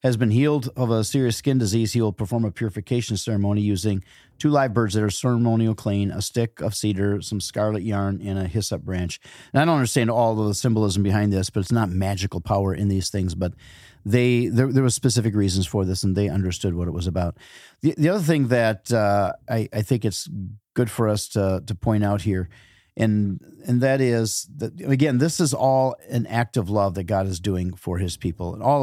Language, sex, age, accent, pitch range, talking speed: English, male, 40-59, American, 95-120 Hz, 225 wpm